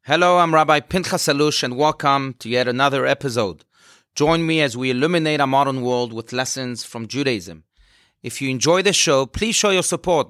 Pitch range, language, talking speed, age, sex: 125-160 Hz, English, 185 wpm, 30-49, male